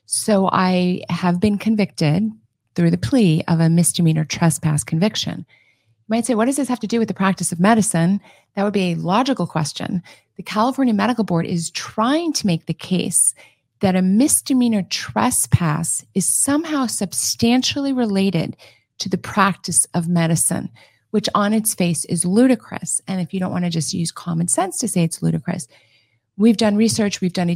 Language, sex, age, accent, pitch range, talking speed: English, female, 30-49, American, 165-205 Hz, 180 wpm